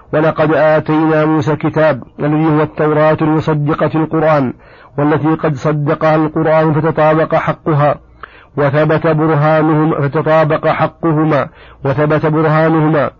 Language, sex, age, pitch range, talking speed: Arabic, male, 50-69, 150-160 Hz, 95 wpm